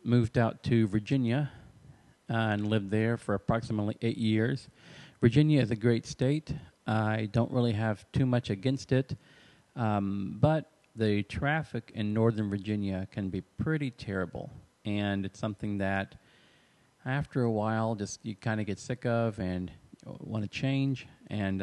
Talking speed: 155 wpm